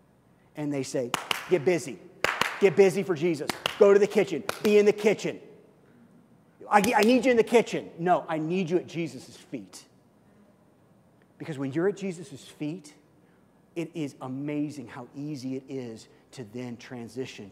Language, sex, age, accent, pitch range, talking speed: English, male, 40-59, American, 130-175 Hz, 160 wpm